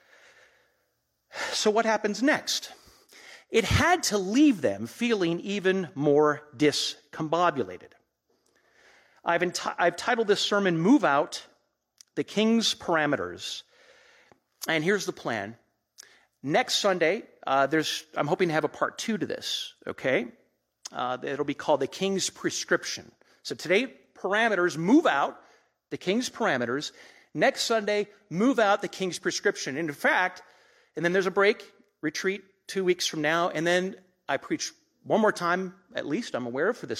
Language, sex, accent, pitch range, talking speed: English, male, American, 150-210 Hz, 145 wpm